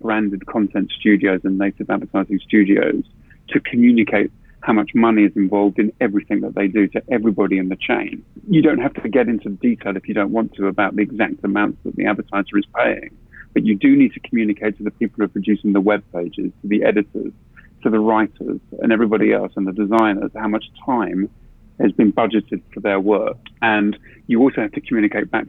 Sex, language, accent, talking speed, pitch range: male, English, British, 205 wpm, 100-115 Hz